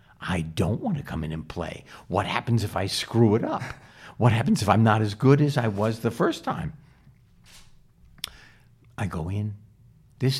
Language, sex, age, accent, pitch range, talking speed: English, male, 60-79, American, 90-125 Hz, 180 wpm